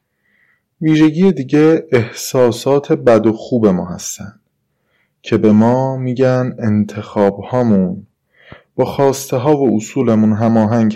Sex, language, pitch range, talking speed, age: male, Persian, 110-140 Hz, 105 wpm, 20-39